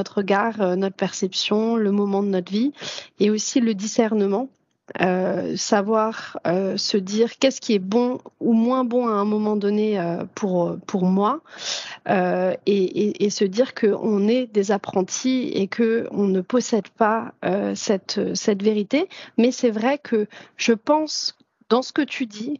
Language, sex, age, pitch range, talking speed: French, female, 30-49, 205-255 Hz, 170 wpm